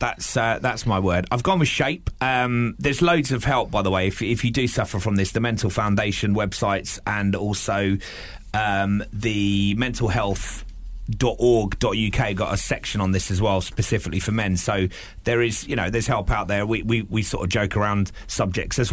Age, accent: 30-49, British